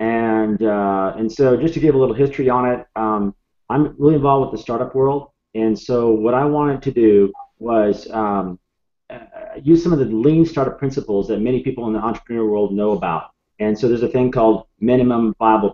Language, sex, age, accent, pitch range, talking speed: English, male, 40-59, American, 110-135 Hz, 205 wpm